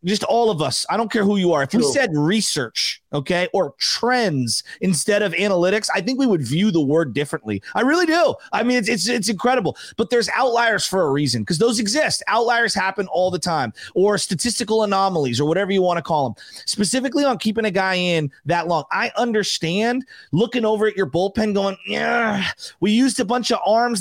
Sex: male